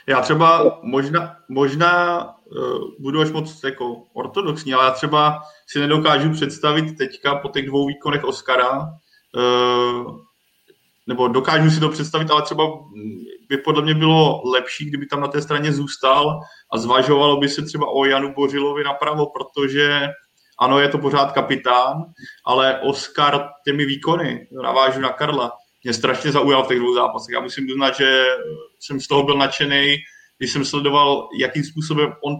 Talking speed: 150 wpm